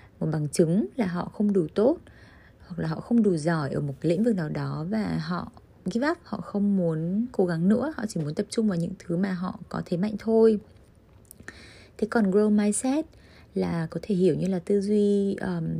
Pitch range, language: 165-210 Hz, Vietnamese